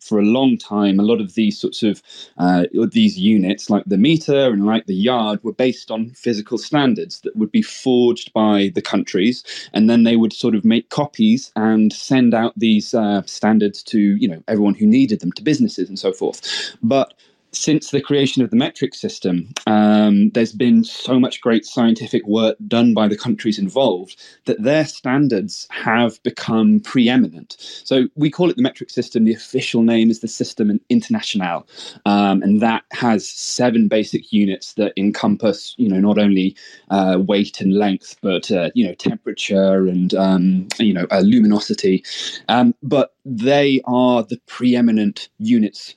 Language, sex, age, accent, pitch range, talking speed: English, male, 20-39, British, 105-140 Hz, 175 wpm